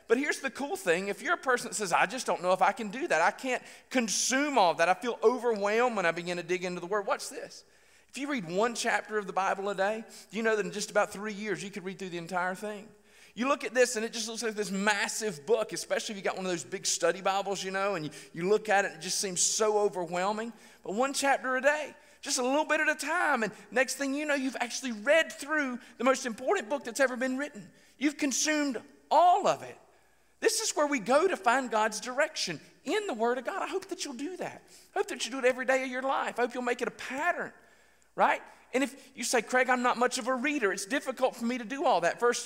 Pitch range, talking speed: 180-255 Hz, 275 wpm